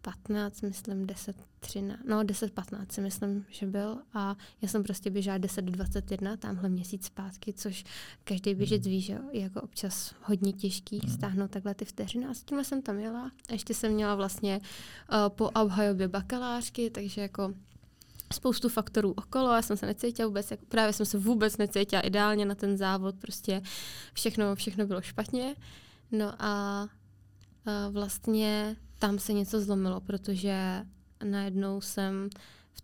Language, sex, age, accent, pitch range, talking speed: Czech, female, 20-39, native, 195-210 Hz, 155 wpm